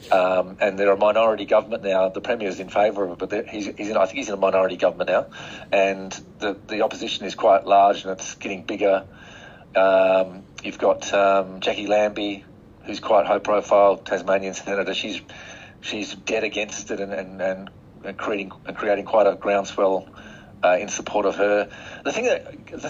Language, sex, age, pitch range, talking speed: English, male, 40-59, 95-135 Hz, 175 wpm